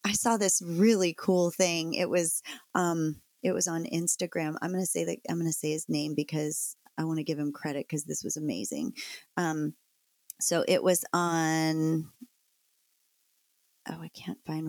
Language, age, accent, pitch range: English, 30-49, American, 160-195 Hz